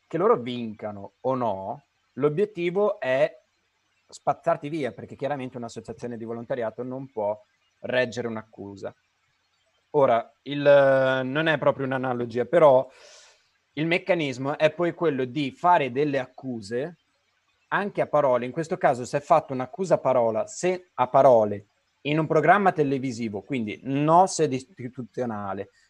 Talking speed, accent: 130 wpm, native